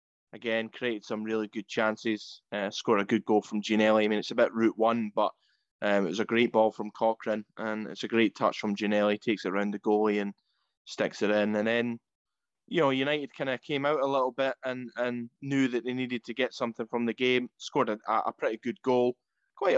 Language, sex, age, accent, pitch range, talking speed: English, male, 20-39, British, 105-120 Hz, 230 wpm